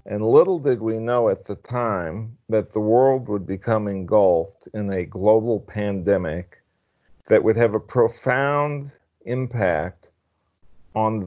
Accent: American